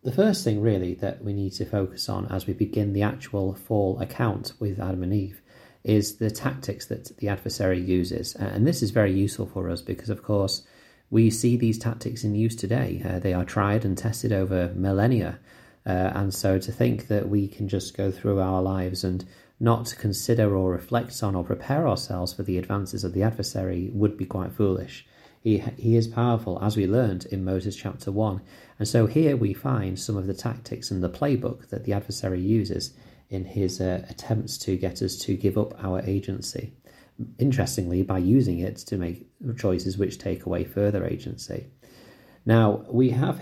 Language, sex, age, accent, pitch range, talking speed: English, male, 30-49, British, 95-115 Hz, 190 wpm